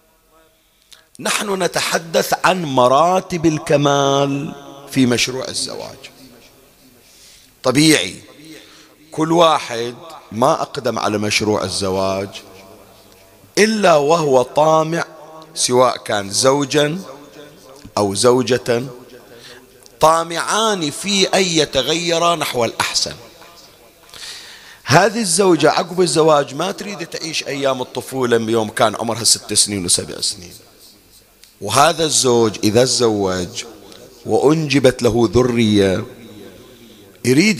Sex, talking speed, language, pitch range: male, 85 wpm, Arabic, 115-160 Hz